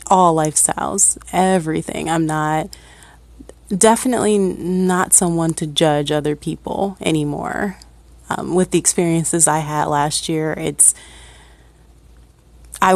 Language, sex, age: English, female, 30-49